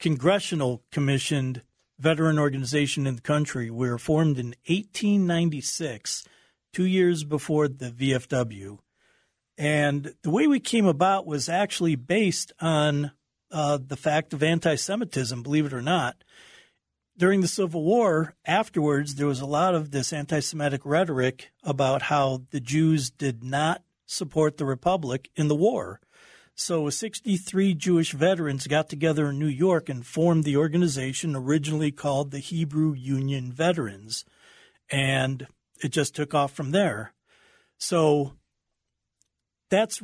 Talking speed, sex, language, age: 130 wpm, male, English, 40-59